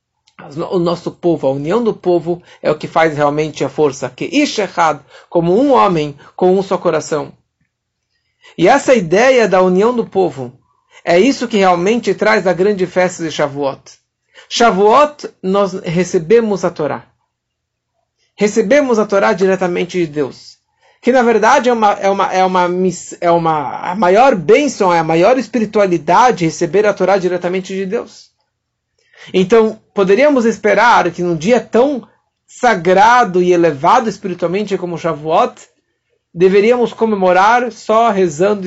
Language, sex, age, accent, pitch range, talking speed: Portuguese, male, 50-69, Brazilian, 175-230 Hz, 145 wpm